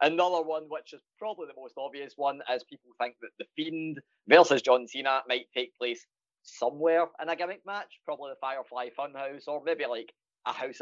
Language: English